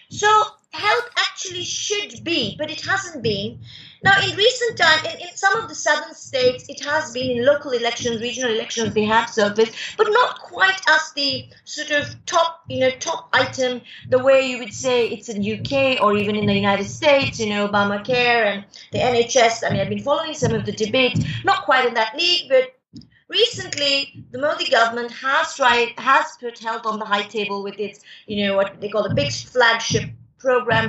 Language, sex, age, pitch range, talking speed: English, female, 30-49, 210-285 Hz, 200 wpm